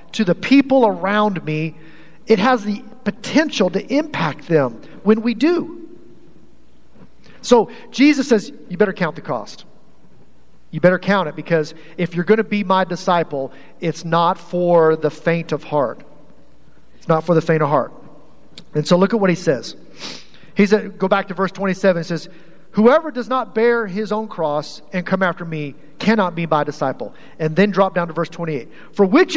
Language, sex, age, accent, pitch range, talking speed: English, male, 40-59, American, 160-215 Hz, 180 wpm